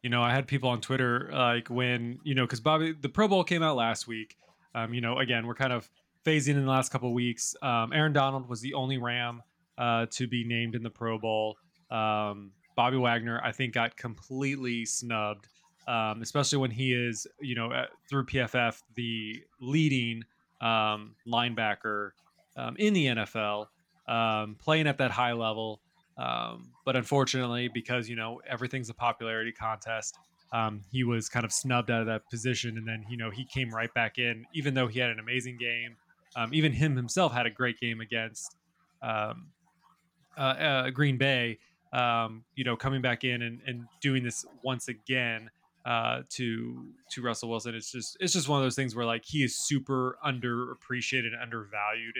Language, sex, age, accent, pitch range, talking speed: English, male, 20-39, American, 115-130 Hz, 185 wpm